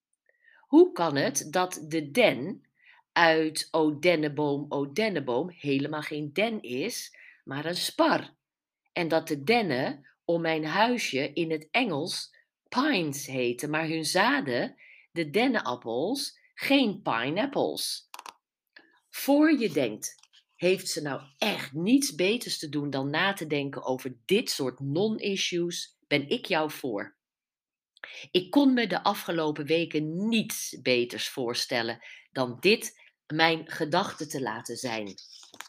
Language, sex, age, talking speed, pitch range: Dutch, female, 50-69, 130 wpm, 150-200 Hz